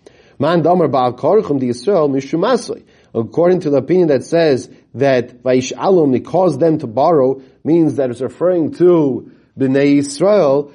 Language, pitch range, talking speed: English, 125-180 Hz, 105 wpm